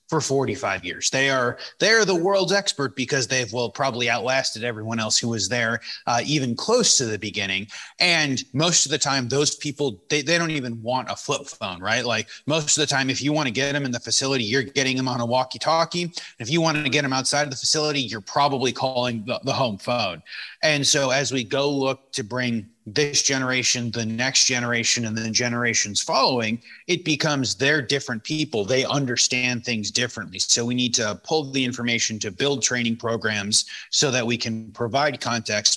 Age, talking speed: 30-49, 205 wpm